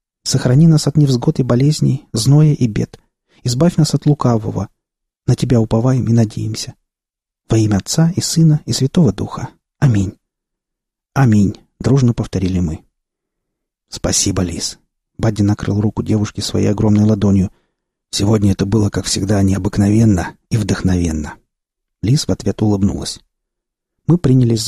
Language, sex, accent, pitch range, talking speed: Russian, male, native, 100-130 Hz, 130 wpm